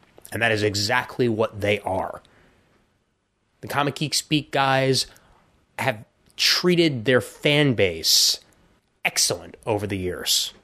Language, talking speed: English, 120 wpm